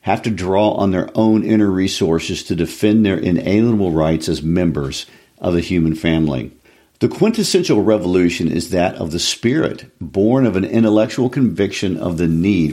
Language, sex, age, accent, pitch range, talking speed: English, male, 50-69, American, 80-110 Hz, 165 wpm